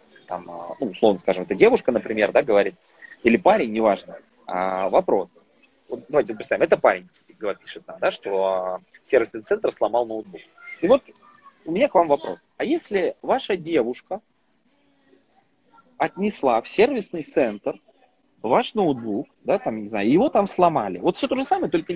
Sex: male